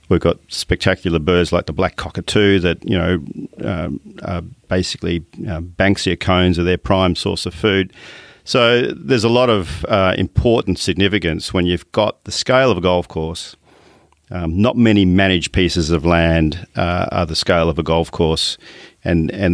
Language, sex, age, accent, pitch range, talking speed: English, male, 40-59, Australian, 85-100 Hz, 170 wpm